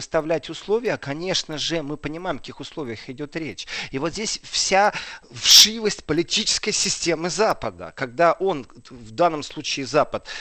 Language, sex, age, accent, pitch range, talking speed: Russian, male, 40-59, native, 130-175 Hz, 145 wpm